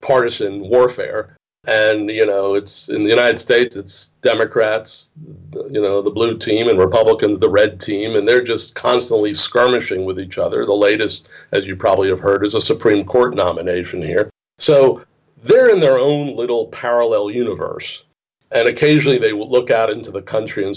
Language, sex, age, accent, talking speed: Dutch, male, 40-59, American, 175 wpm